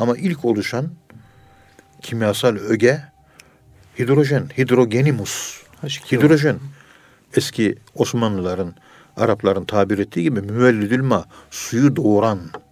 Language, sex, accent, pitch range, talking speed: Turkish, male, native, 100-130 Hz, 85 wpm